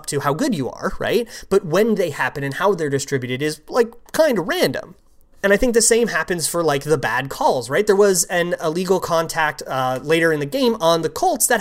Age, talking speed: 20-39, 235 wpm